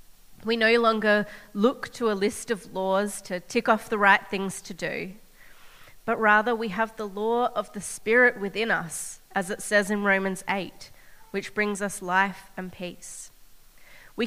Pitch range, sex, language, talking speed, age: 200-240 Hz, female, English, 170 wpm, 30-49